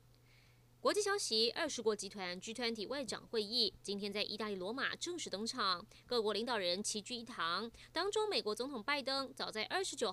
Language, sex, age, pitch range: Chinese, female, 20-39, 210-325 Hz